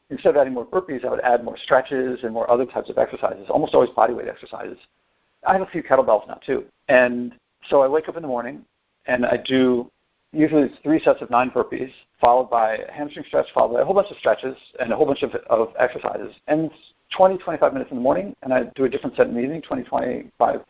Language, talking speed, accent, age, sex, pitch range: English, 240 wpm, American, 50-69, male, 120-150 Hz